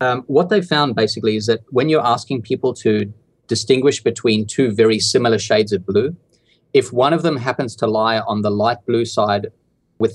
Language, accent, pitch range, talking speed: English, Australian, 105-125 Hz, 195 wpm